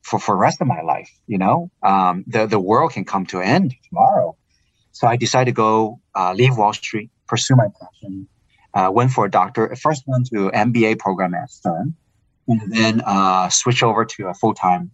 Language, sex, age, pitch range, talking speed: English, male, 30-49, 105-130 Hz, 205 wpm